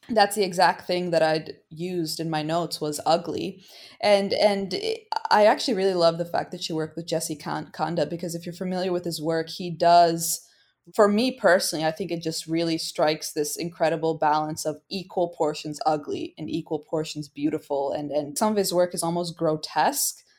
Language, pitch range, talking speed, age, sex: English, 160-190 Hz, 190 wpm, 20-39, female